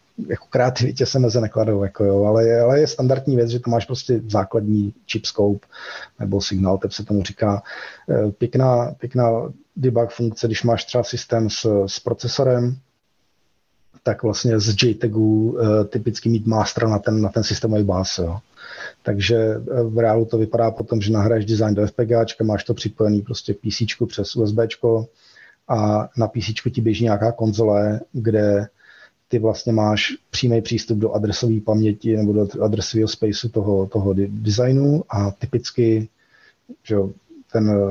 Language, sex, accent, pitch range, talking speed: Czech, male, native, 105-120 Hz, 150 wpm